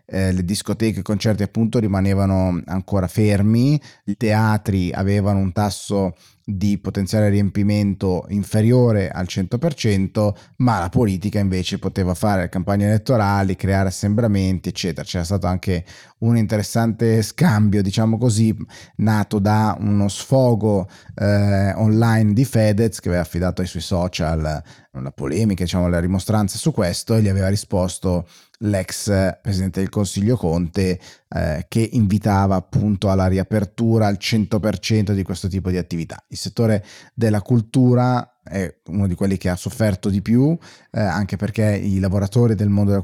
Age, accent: 30-49, native